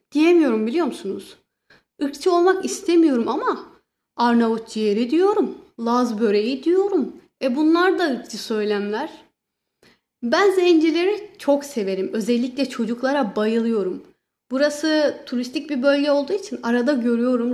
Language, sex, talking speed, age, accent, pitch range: Turkish, female, 115 wpm, 30-49, native, 230-325 Hz